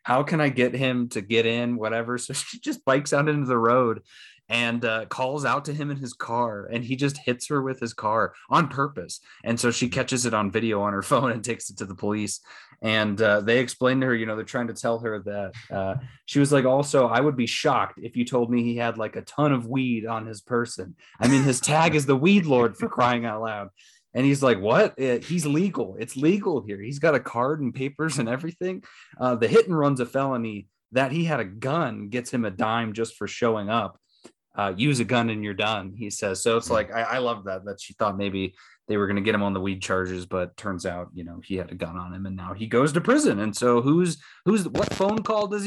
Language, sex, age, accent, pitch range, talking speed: English, male, 20-39, American, 105-135 Hz, 255 wpm